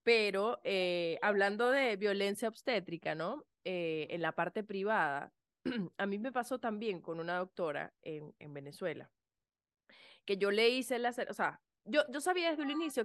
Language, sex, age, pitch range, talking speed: Spanish, female, 20-39, 180-230 Hz, 165 wpm